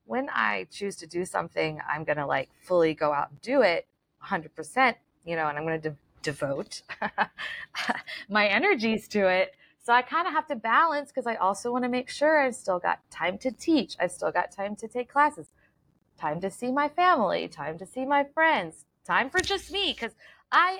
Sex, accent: female, American